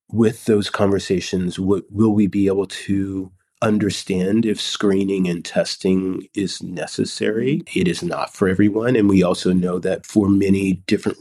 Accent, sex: American, male